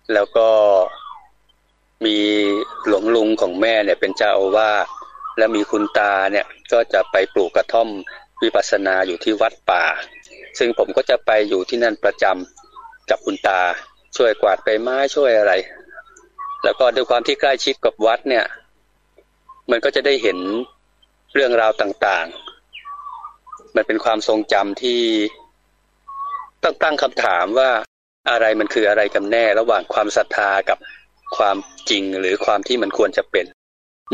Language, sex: Thai, male